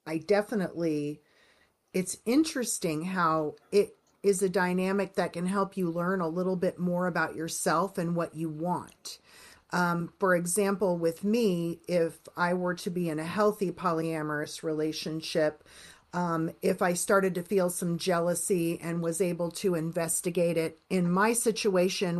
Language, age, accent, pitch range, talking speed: English, 40-59, American, 175-205 Hz, 150 wpm